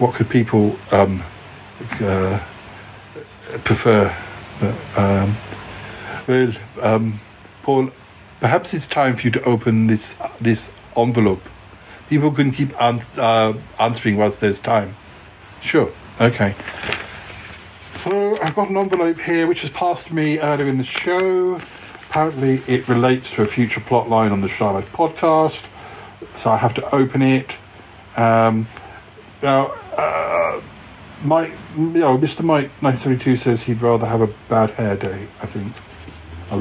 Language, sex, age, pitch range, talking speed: English, male, 60-79, 100-130 Hz, 140 wpm